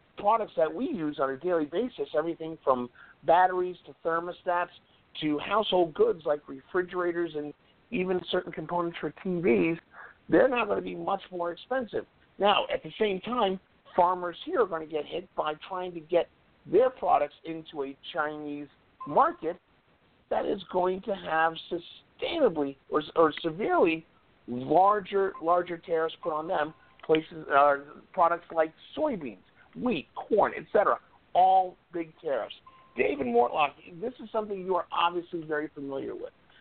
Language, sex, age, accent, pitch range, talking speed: English, male, 50-69, American, 155-190 Hz, 150 wpm